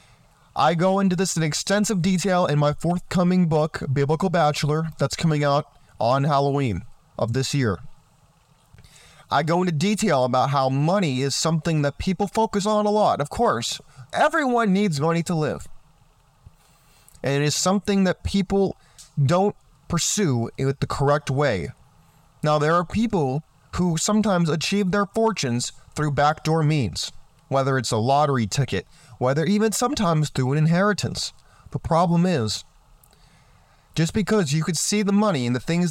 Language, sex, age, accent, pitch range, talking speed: English, male, 30-49, American, 135-180 Hz, 150 wpm